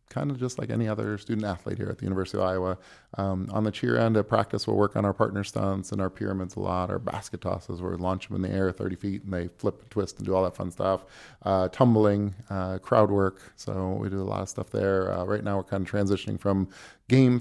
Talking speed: 270 wpm